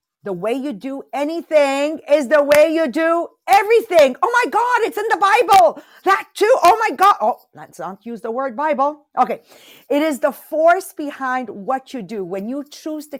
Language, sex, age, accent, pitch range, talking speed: English, female, 50-69, American, 225-325 Hz, 195 wpm